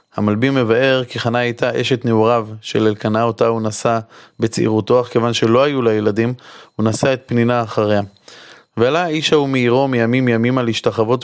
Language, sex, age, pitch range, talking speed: Hebrew, male, 20-39, 115-135 Hz, 160 wpm